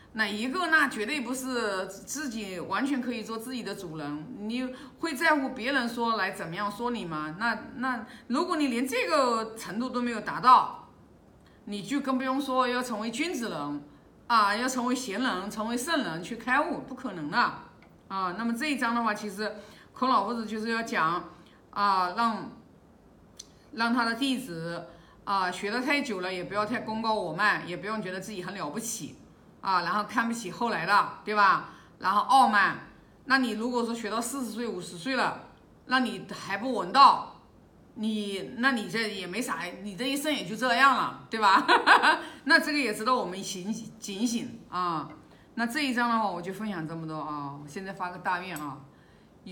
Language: Chinese